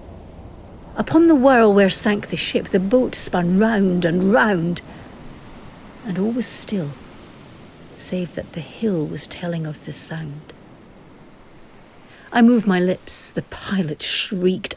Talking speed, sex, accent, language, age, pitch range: 135 wpm, female, British, English, 60-79, 180-240 Hz